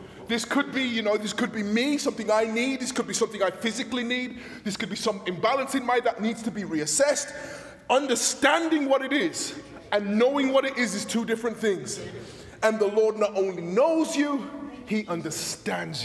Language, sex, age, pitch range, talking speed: English, male, 20-39, 215-275 Hz, 200 wpm